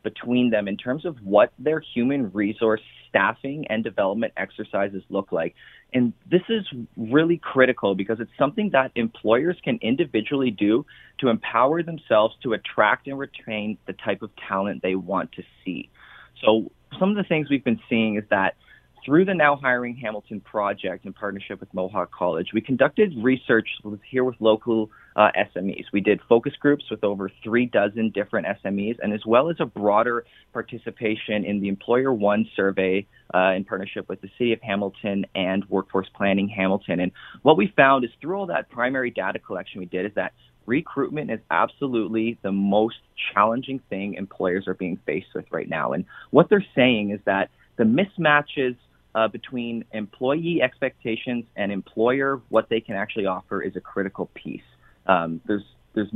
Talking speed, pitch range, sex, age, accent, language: 170 wpm, 100-130 Hz, male, 30-49, American, English